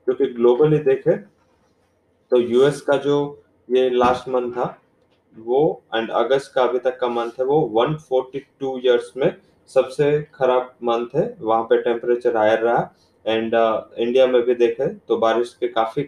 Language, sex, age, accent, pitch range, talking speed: English, male, 20-39, Indian, 120-130 Hz, 165 wpm